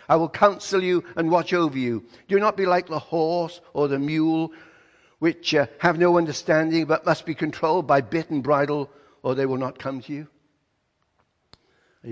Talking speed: 190 wpm